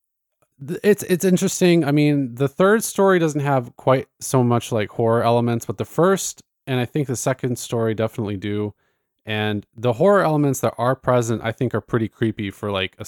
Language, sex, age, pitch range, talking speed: English, male, 20-39, 100-125 Hz, 195 wpm